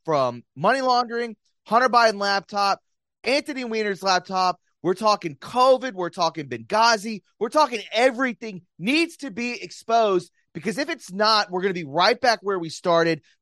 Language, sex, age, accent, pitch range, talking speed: English, male, 30-49, American, 145-220 Hz, 155 wpm